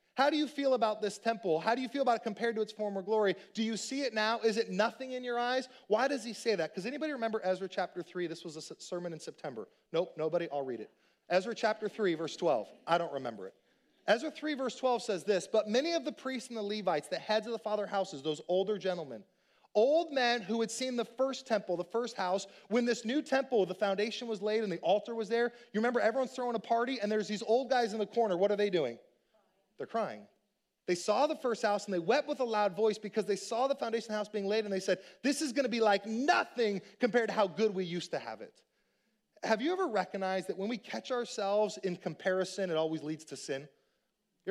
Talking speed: 245 wpm